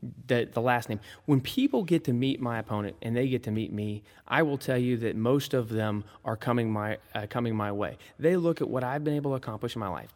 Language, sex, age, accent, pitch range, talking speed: English, male, 30-49, American, 115-140 Hz, 260 wpm